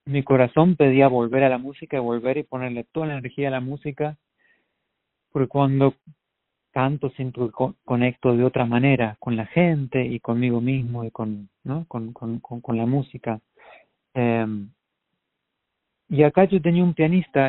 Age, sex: 40-59, male